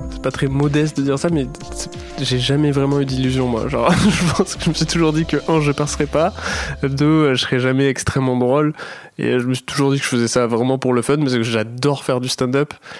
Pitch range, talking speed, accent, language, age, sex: 120-145 Hz, 270 wpm, French, French, 20-39, male